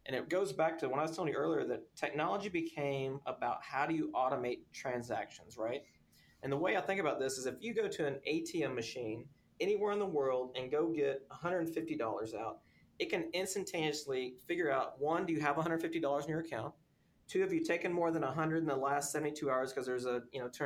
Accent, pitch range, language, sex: American, 135-180 Hz, English, male